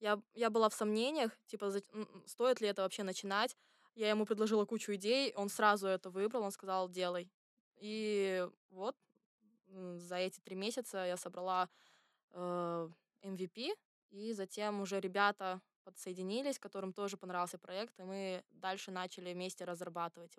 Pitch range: 185-220 Hz